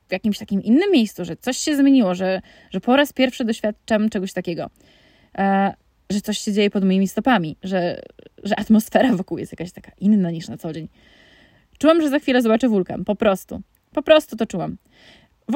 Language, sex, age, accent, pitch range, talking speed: Polish, female, 20-39, native, 185-235 Hz, 195 wpm